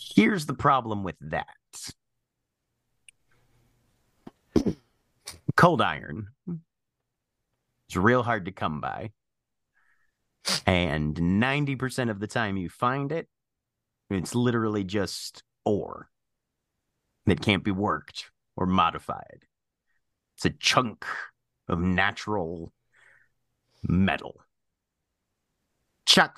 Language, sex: English, male